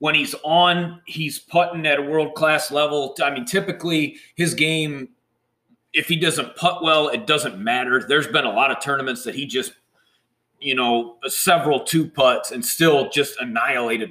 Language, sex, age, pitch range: English, male, 30-49, 130-170 Hz